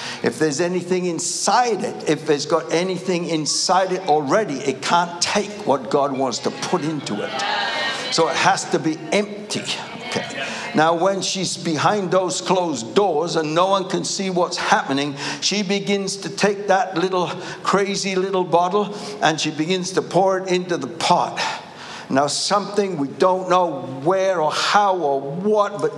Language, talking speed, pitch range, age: English, 165 wpm, 170-205 Hz, 60-79